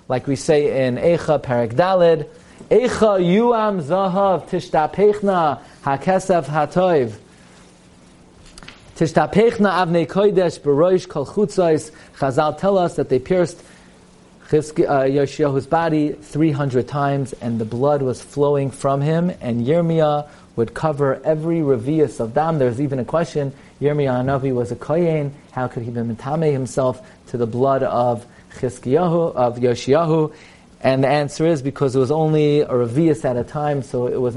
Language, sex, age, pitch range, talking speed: English, male, 30-49, 130-165 Hz, 145 wpm